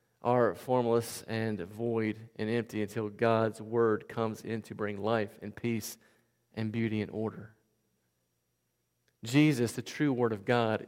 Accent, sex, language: American, male, English